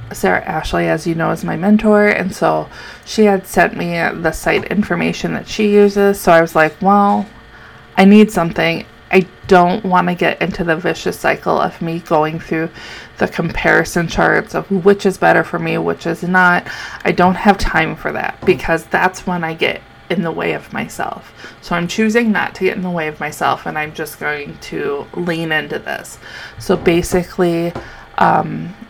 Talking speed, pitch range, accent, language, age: 190 wpm, 160-195 Hz, American, English, 20-39